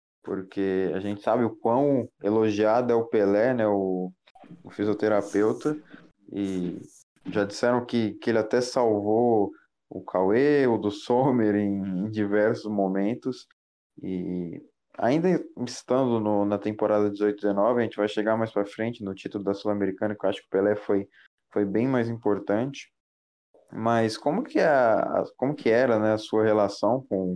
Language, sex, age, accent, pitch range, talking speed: Portuguese, male, 20-39, Brazilian, 100-115 Hz, 160 wpm